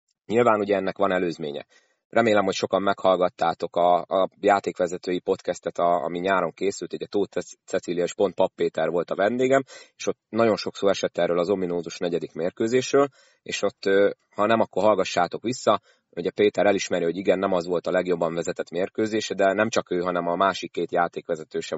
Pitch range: 90-120 Hz